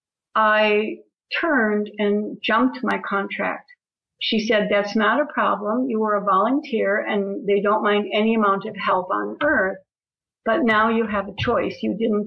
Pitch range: 205-235 Hz